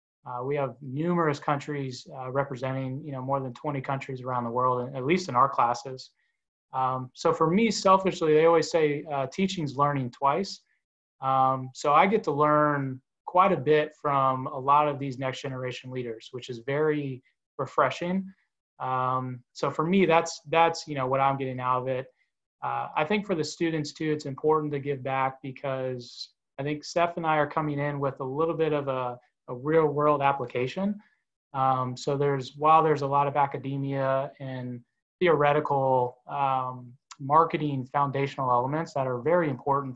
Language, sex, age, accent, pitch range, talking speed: English, male, 20-39, American, 130-150 Hz, 175 wpm